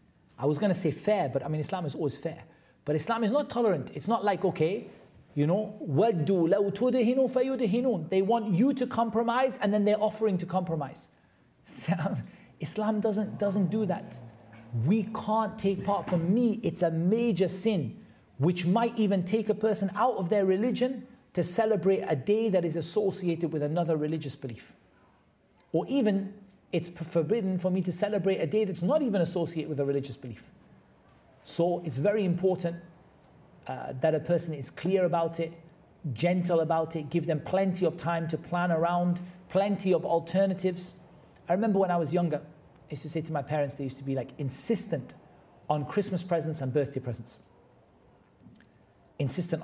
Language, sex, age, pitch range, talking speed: English, male, 40-59, 155-205 Hz, 170 wpm